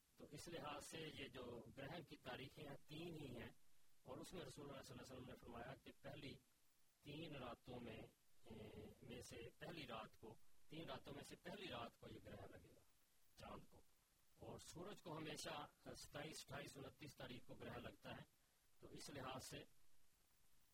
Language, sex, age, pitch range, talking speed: Urdu, male, 40-59, 115-145 Hz, 180 wpm